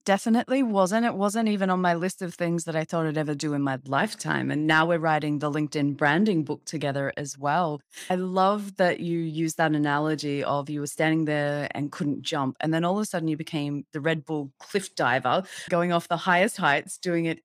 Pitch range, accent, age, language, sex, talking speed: 150-185 Hz, Australian, 30-49, English, female, 225 wpm